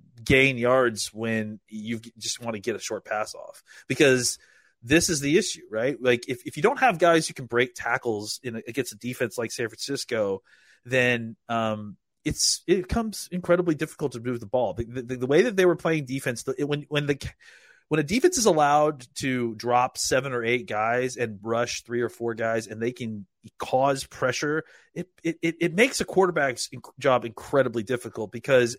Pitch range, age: 120-155 Hz, 30-49